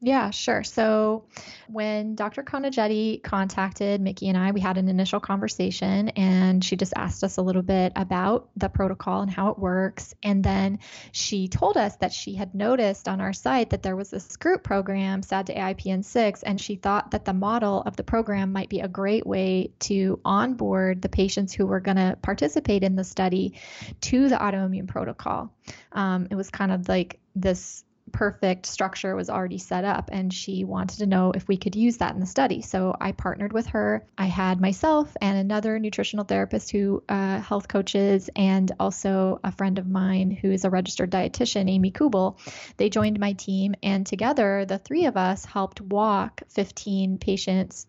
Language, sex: English, female